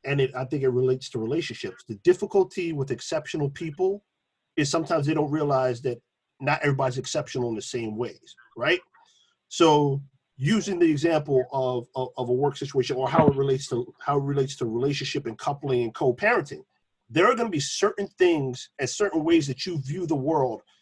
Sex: male